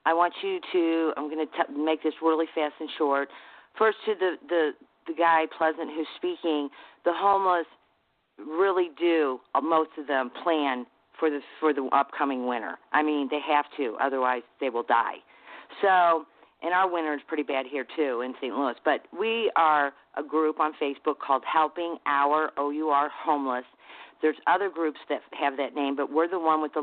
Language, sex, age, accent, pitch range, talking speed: English, female, 40-59, American, 140-165 Hz, 190 wpm